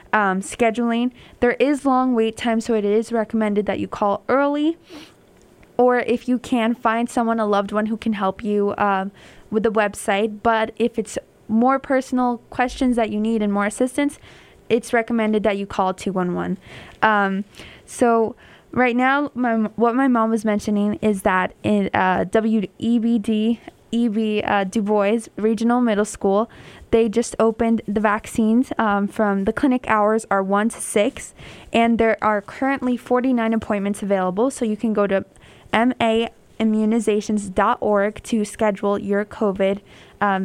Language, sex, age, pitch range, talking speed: English, female, 20-39, 205-235 Hz, 155 wpm